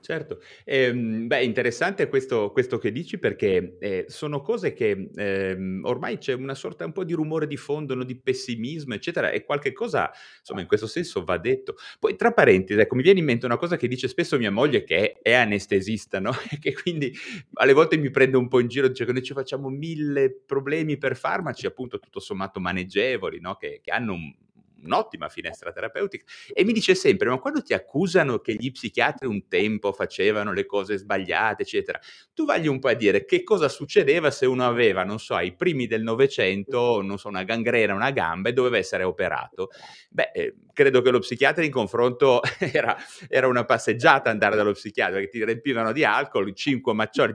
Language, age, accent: Italian, 30-49, native